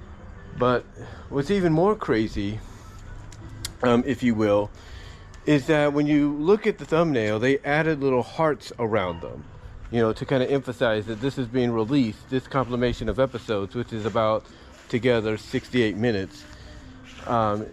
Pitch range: 110-135 Hz